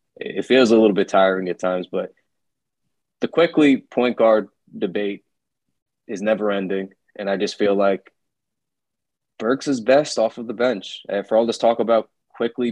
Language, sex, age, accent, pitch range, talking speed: English, male, 20-39, American, 100-115 Hz, 170 wpm